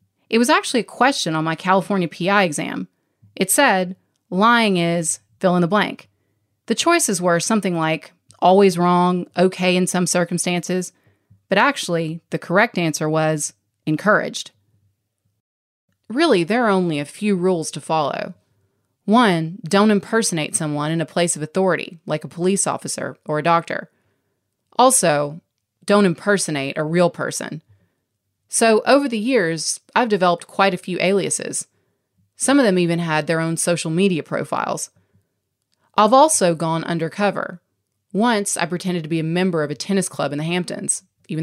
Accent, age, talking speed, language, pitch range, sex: American, 30-49, 155 wpm, English, 150-195 Hz, female